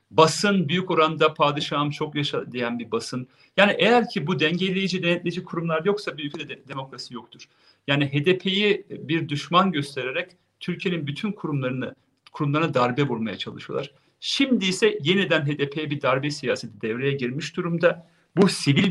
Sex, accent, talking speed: male, native, 145 wpm